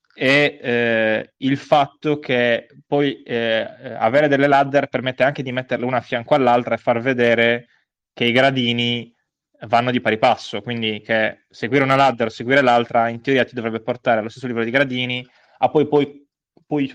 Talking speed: 175 wpm